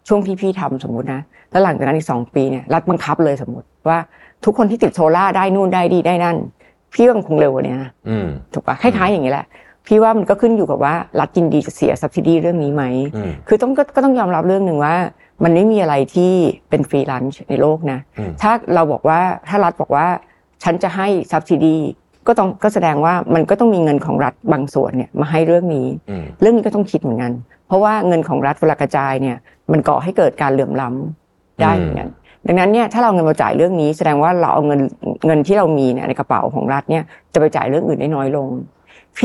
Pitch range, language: 140-190 Hz, Thai